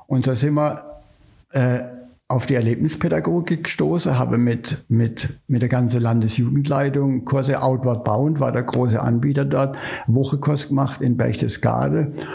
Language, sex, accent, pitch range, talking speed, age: German, male, German, 120-145 Hz, 130 wpm, 60-79